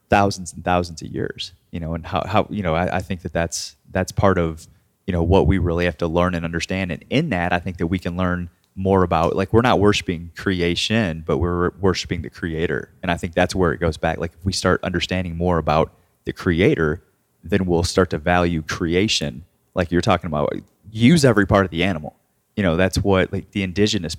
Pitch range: 85-100 Hz